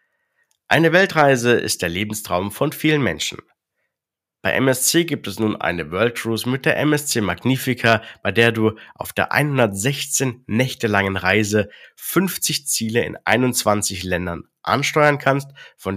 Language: German